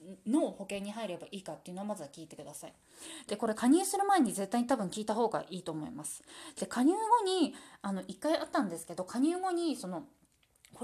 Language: Japanese